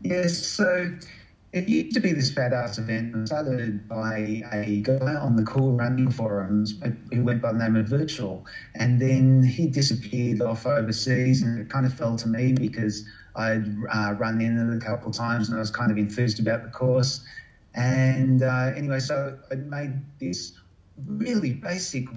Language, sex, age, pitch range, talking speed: English, male, 30-49, 110-140 Hz, 175 wpm